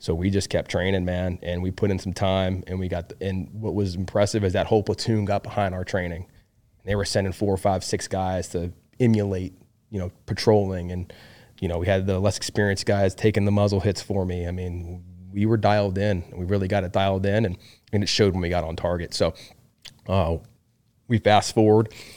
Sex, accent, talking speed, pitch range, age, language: male, American, 225 wpm, 90-105 Hz, 20-39, English